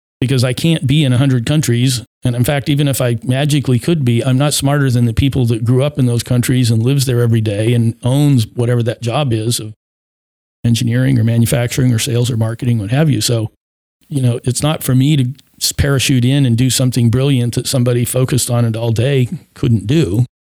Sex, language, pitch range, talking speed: male, English, 115-135 Hz, 215 wpm